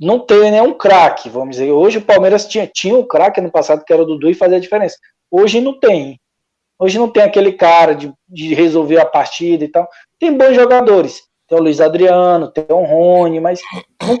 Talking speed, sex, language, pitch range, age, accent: 210 wpm, male, Portuguese, 155-215 Hz, 20-39, Brazilian